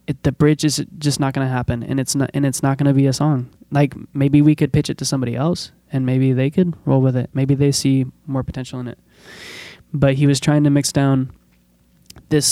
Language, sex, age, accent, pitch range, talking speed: English, male, 20-39, American, 130-145 Hz, 225 wpm